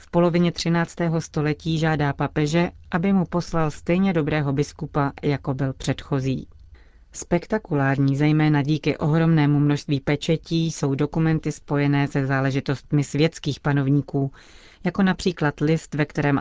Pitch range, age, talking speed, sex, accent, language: 140-160 Hz, 30-49, 120 wpm, female, native, Czech